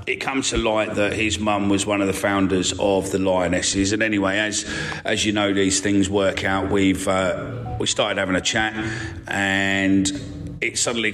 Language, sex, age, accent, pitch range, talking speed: English, male, 40-59, British, 95-110 Hz, 195 wpm